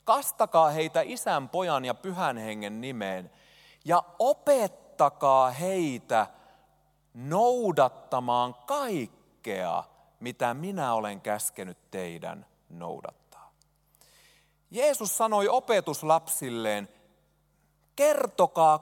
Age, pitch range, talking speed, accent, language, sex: 30-49, 135-215 Hz, 75 wpm, native, Finnish, male